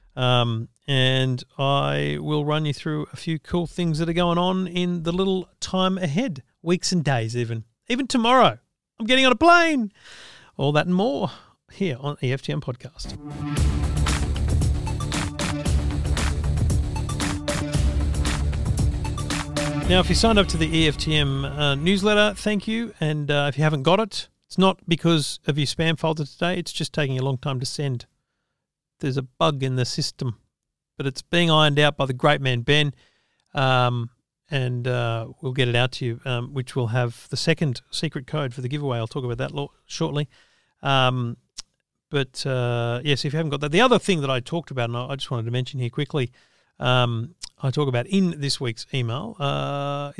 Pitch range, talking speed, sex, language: 125-165 Hz, 175 wpm, male, English